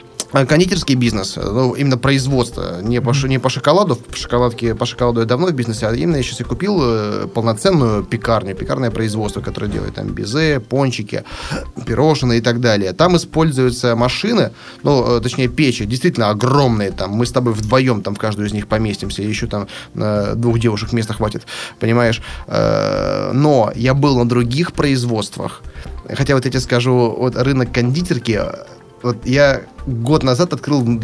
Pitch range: 115-135 Hz